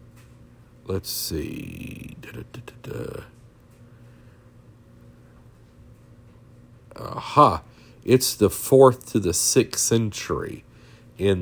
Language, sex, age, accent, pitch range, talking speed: English, male, 50-69, American, 95-120 Hz, 85 wpm